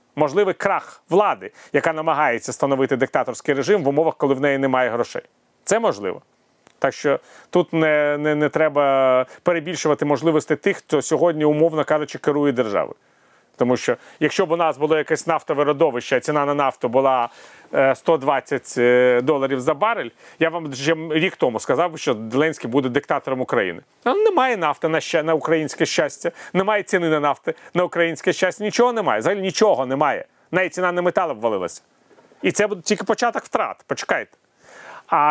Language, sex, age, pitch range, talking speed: Ukrainian, male, 30-49, 150-185 Hz, 165 wpm